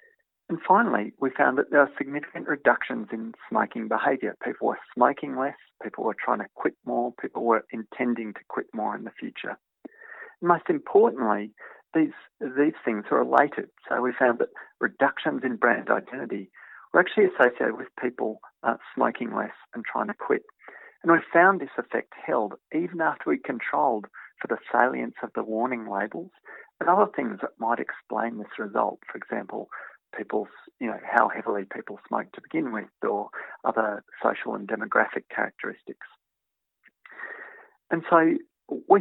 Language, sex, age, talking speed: English, male, 50-69, 160 wpm